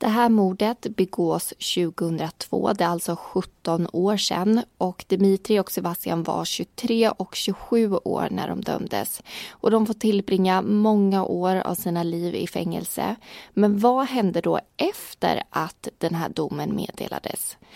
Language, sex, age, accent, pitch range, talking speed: Swedish, female, 20-39, native, 175-215 Hz, 145 wpm